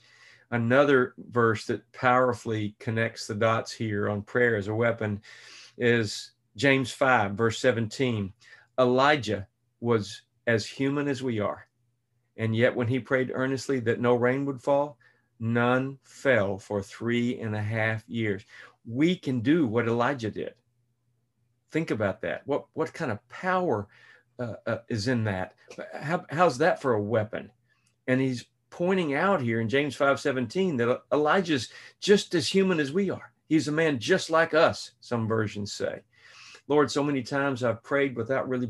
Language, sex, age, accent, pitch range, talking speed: English, male, 50-69, American, 110-140 Hz, 160 wpm